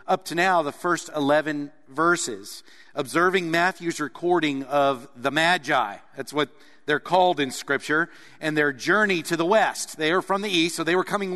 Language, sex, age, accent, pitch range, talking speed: English, male, 50-69, American, 155-200 Hz, 180 wpm